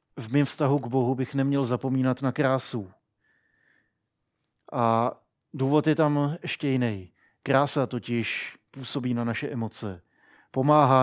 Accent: native